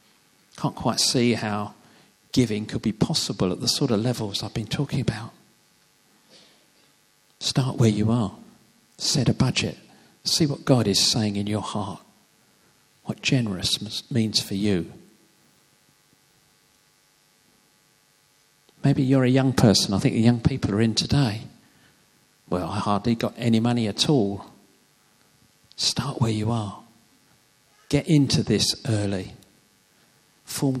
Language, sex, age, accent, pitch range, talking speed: English, male, 50-69, British, 105-135 Hz, 130 wpm